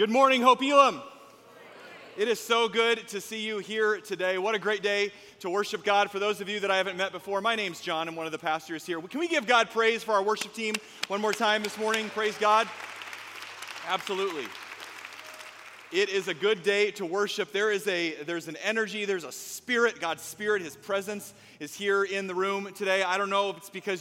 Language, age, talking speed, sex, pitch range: English, 30-49, 215 wpm, male, 170-210 Hz